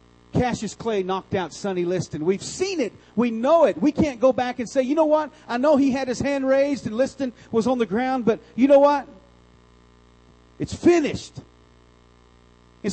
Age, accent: 40-59, American